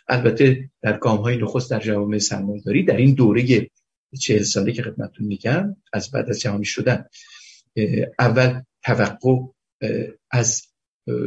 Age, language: 50-69, Persian